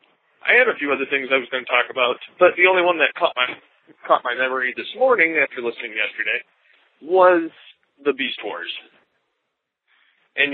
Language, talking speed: English, 180 wpm